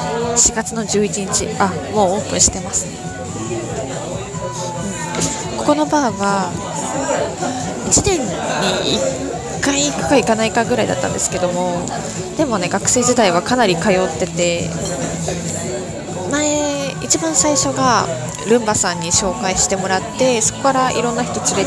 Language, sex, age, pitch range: Japanese, female, 20-39, 180-230 Hz